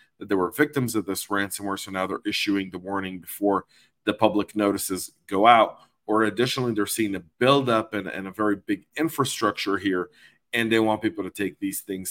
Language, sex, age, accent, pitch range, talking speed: English, male, 40-59, American, 95-115 Hz, 195 wpm